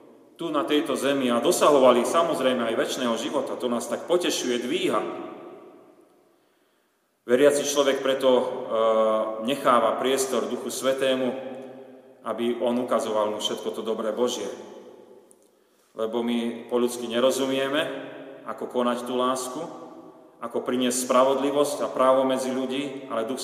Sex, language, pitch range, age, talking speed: male, Slovak, 120-140 Hz, 40-59, 120 wpm